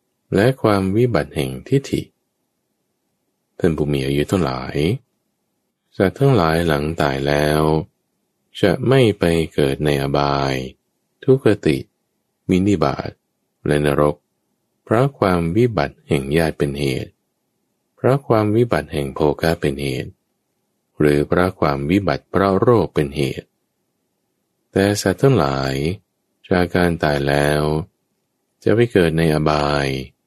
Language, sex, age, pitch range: English, male, 20-39, 70-100 Hz